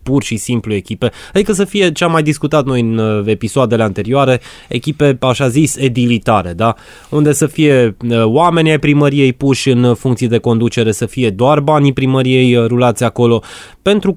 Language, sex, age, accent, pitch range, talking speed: Romanian, male, 20-39, native, 105-140 Hz, 165 wpm